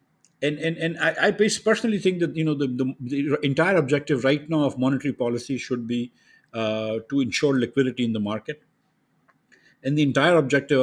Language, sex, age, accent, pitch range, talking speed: English, male, 50-69, Indian, 120-140 Hz, 185 wpm